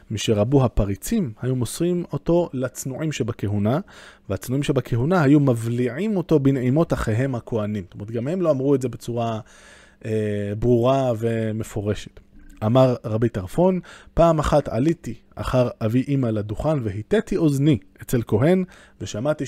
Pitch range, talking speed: 110-155 Hz, 125 wpm